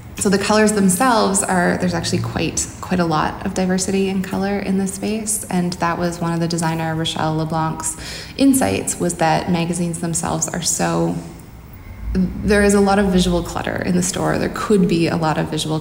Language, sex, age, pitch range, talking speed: English, female, 20-39, 150-190 Hz, 195 wpm